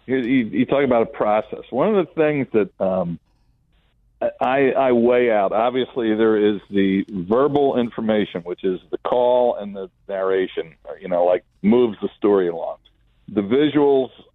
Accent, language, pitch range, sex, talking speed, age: American, English, 105-145 Hz, male, 160 wpm, 50-69